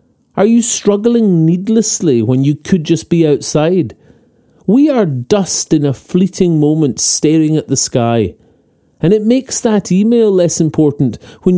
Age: 40-59